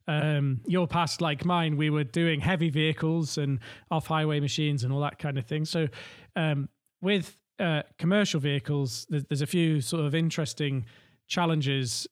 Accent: British